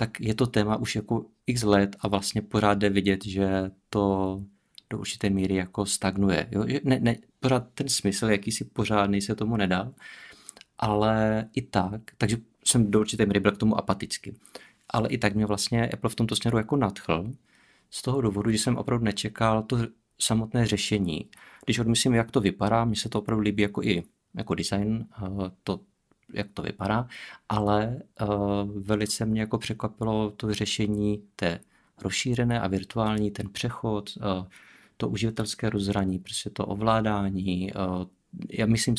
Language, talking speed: Czech, 165 wpm